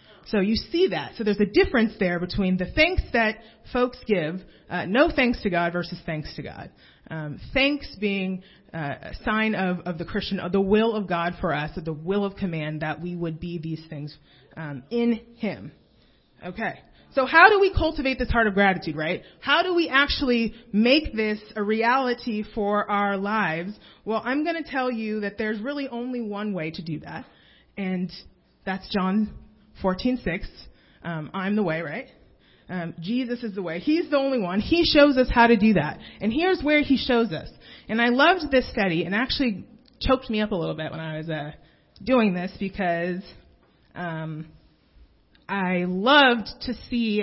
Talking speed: 190 wpm